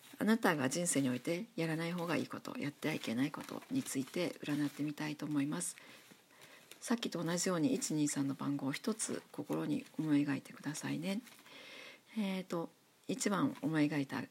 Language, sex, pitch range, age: Japanese, female, 150-235 Hz, 50-69